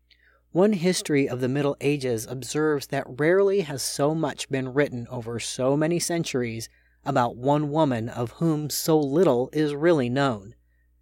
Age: 30-49